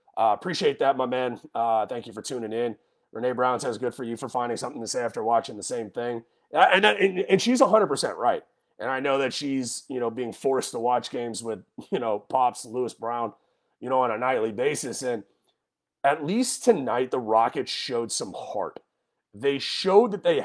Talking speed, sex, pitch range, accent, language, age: 215 wpm, male, 120-165 Hz, American, English, 30-49